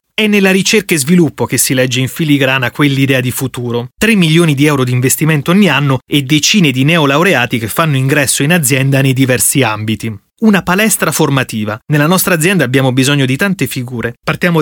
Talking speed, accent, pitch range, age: 185 wpm, native, 125-165 Hz, 30-49